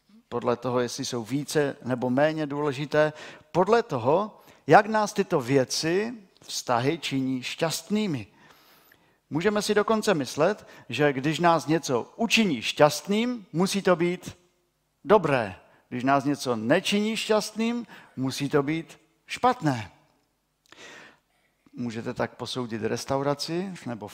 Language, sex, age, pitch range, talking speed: Czech, male, 50-69, 120-165 Hz, 110 wpm